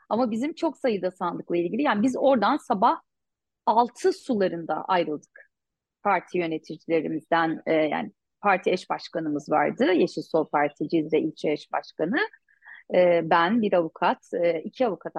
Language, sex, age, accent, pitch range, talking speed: Turkish, female, 30-49, native, 175-245 Hz, 125 wpm